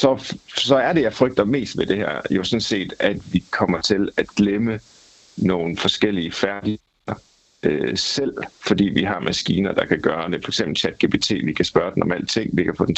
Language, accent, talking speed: Danish, native, 200 wpm